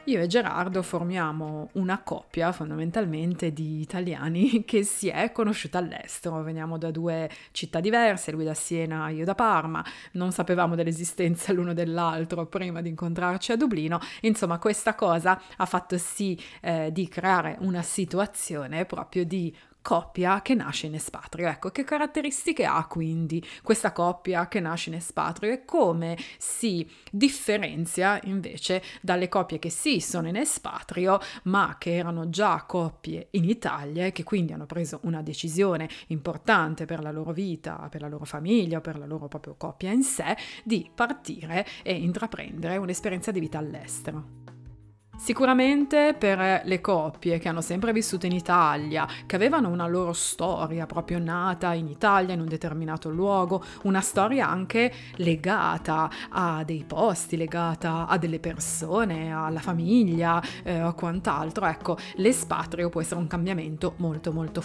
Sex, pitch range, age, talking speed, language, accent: female, 165-195 Hz, 30-49, 150 wpm, Italian, native